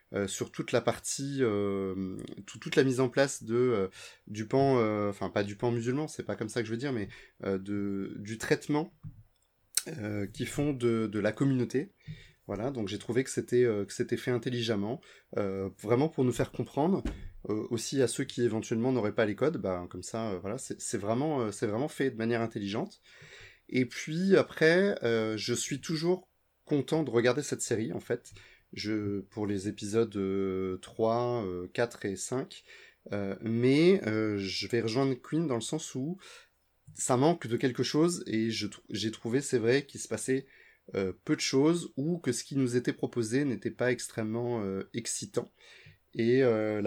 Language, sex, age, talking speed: French, male, 30-49, 190 wpm